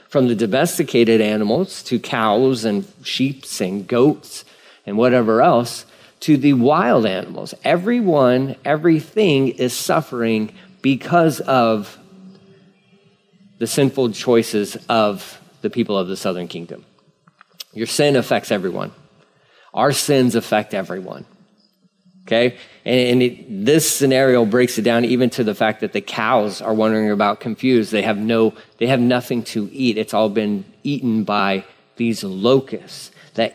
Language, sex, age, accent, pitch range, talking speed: English, male, 40-59, American, 110-135 Hz, 130 wpm